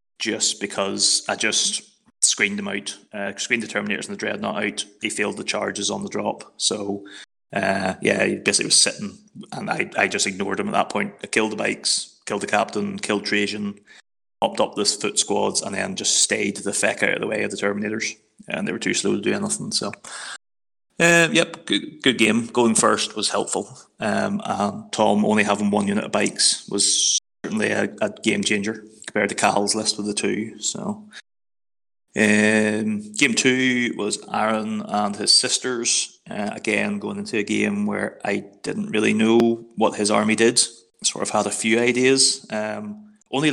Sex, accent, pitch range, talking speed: male, British, 105-130 Hz, 190 wpm